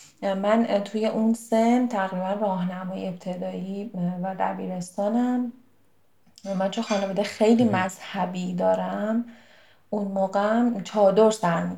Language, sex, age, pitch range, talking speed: Persian, female, 30-49, 180-210 Hz, 95 wpm